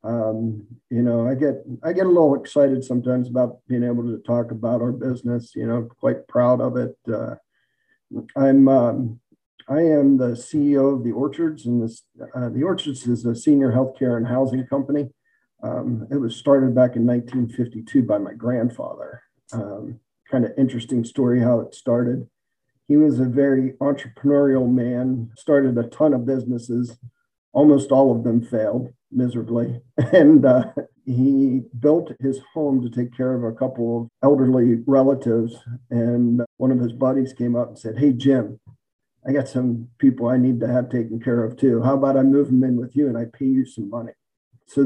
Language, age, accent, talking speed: English, 50-69, American, 180 wpm